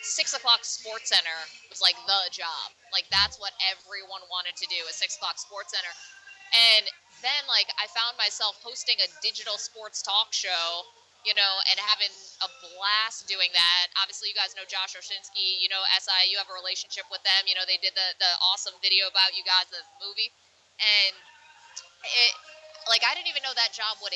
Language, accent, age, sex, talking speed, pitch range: English, American, 20-39, female, 190 wpm, 185-235 Hz